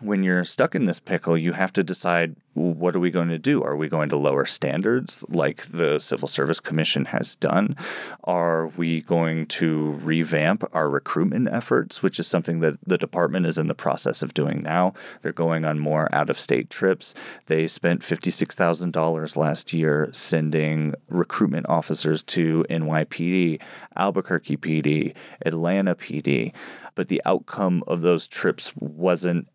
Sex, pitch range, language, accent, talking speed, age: male, 80-85 Hz, English, American, 155 wpm, 30-49